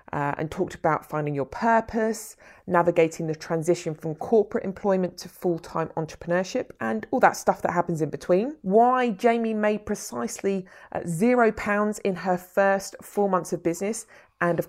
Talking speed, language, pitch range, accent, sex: 165 wpm, English, 160-210 Hz, British, female